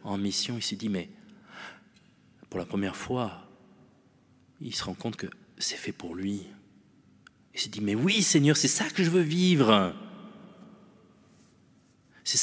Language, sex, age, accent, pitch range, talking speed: French, male, 40-59, French, 95-130 Hz, 155 wpm